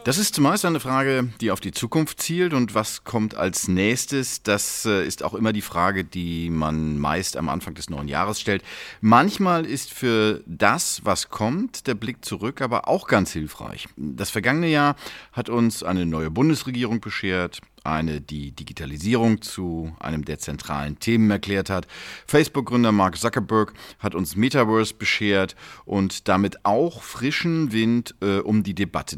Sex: male